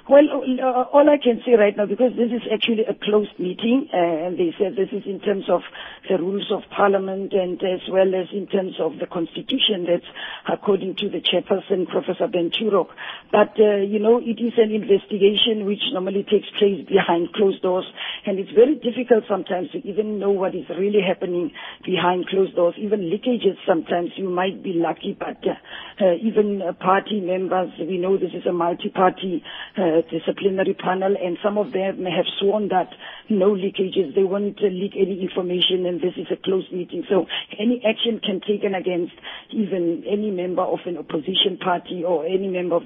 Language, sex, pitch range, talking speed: English, female, 180-210 Hz, 190 wpm